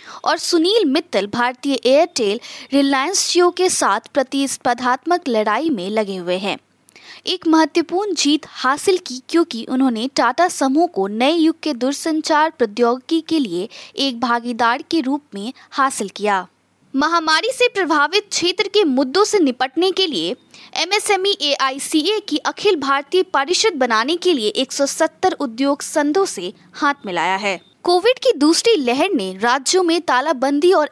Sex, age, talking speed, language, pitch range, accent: female, 20-39, 140 wpm, Hindi, 250-345 Hz, native